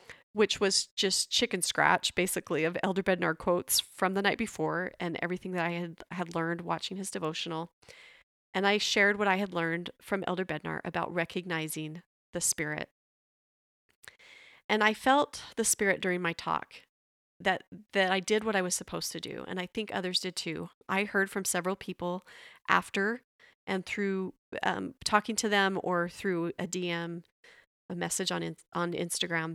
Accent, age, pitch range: American, 30-49, 170-210 Hz